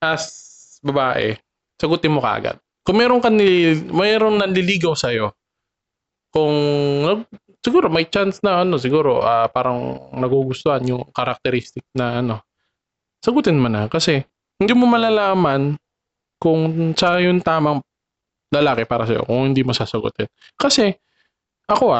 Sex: male